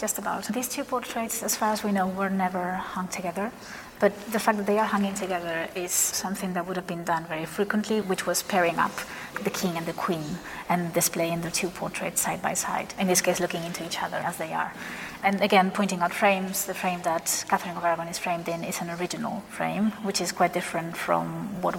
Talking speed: 225 wpm